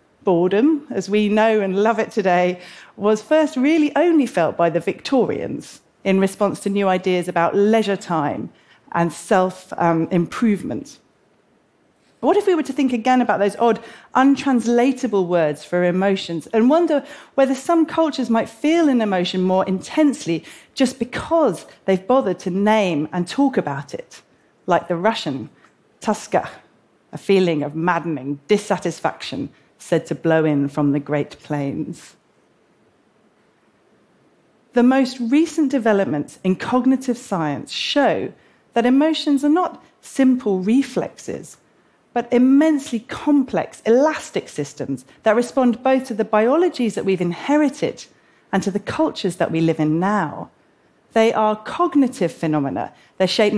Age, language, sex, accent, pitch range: 40-59, Korean, female, British, 175-265 Hz